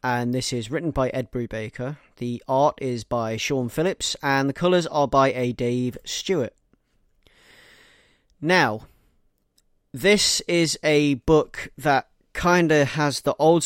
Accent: British